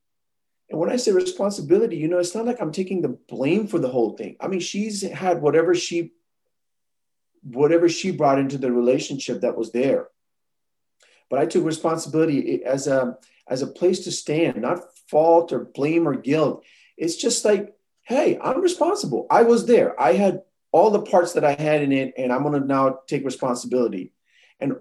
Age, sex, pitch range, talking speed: 40-59, male, 125-180 Hz, 185 wpm